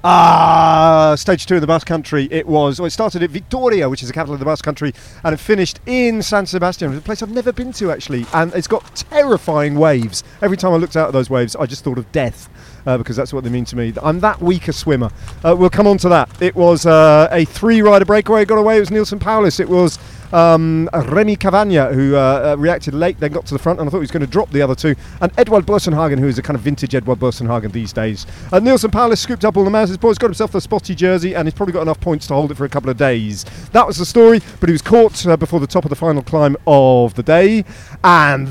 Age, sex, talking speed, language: 40-59, male, 270 wpm, English